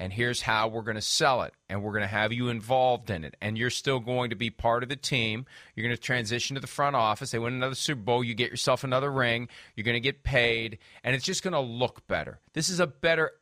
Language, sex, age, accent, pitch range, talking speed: English, male, 40-59, American, 115-145 Hz, 275 wpm